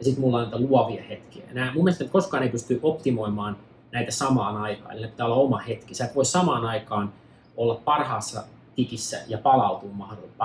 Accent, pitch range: native, 105-130 Hz